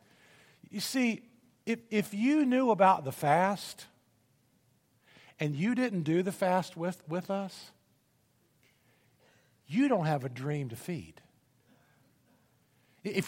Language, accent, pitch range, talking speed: English, American, 175-260 Hz, 115 wpm